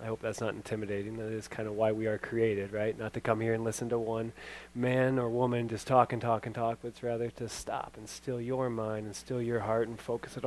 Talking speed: 270 wpm